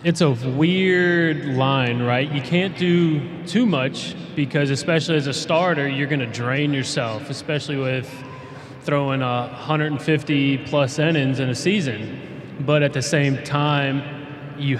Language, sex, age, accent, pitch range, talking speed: English, male, 20-39, American, 130-150 Hz, 160 wpm